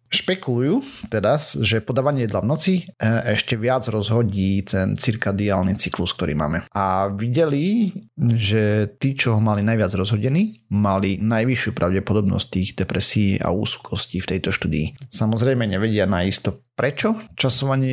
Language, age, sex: Slovak, 30-49, male